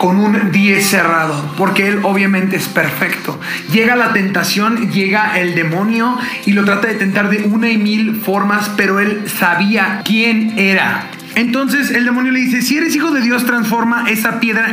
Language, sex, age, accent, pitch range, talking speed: Spanish, male, 30-49, Mexican, 195-235 Hz, 175 wpm